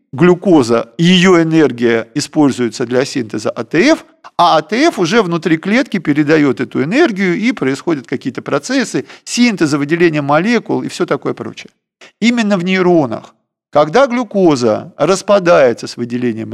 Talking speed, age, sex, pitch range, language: 125 wpm, 50-69, male, 145-210 Hz, Russian